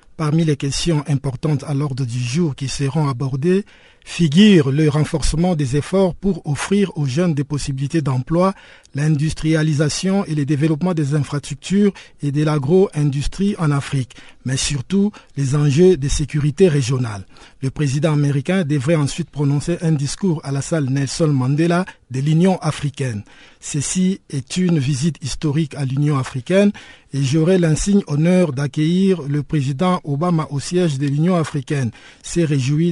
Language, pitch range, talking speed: French, 140-175 Hz, 145 wpm